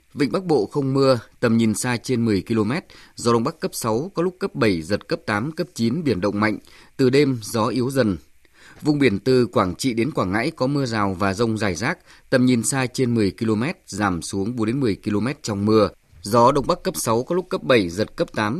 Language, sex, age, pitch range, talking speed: Vietnamese, male, 20-39, 105-130 Hz, 240 wpm